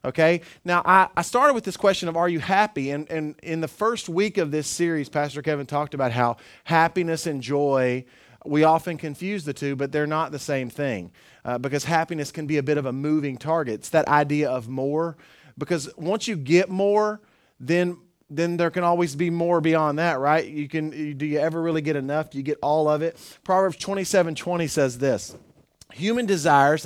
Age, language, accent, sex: 30-49, English, American, male